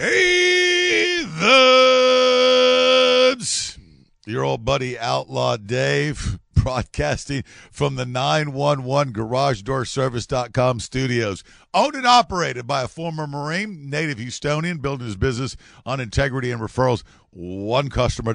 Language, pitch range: English, 100-140 Hz